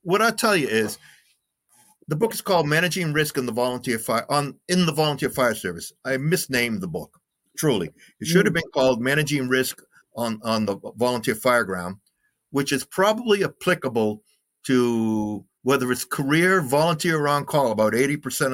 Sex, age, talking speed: male, 50-69, 170 wpm